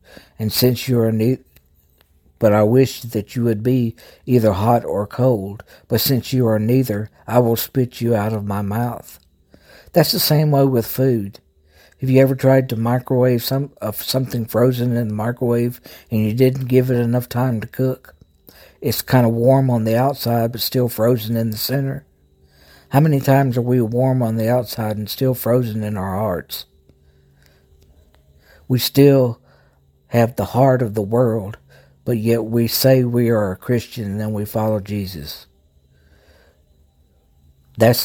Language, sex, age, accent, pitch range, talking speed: English, male, 60-79, American, 100-125 Hz, 170 wpm